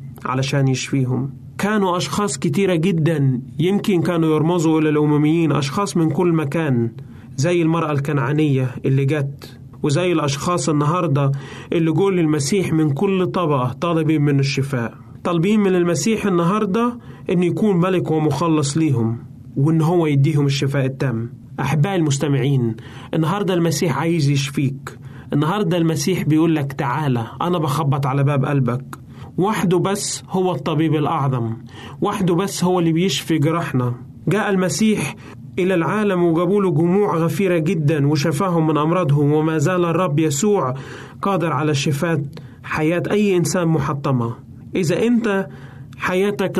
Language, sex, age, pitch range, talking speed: Arabic, male, 30-49, 140-180 Hz, 125 wpm